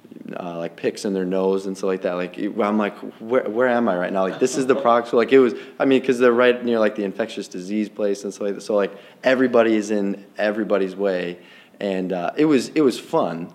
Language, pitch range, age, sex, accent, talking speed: English, 90-105 Hz, 20-39, male, American, 255 wpm